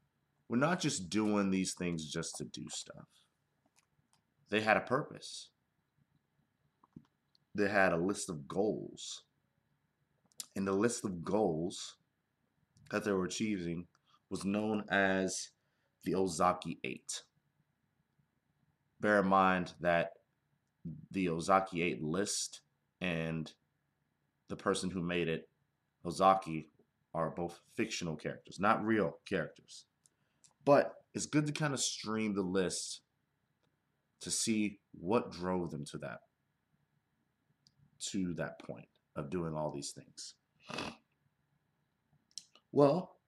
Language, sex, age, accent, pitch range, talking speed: English, male, 30-49, American, 85-105 Hz, 115 wpm